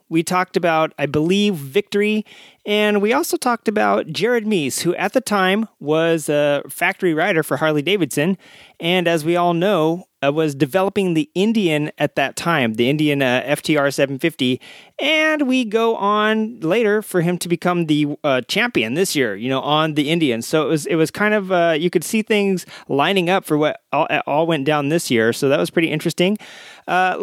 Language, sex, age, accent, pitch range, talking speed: English, male, 30-49, American, 150-200 Hz, 195 wpm